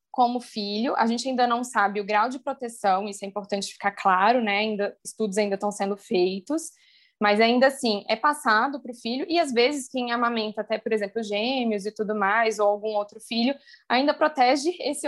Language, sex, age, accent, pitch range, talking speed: Portuguese, female, 10-29, Brazilian, 210-255 Hz, 195 wpm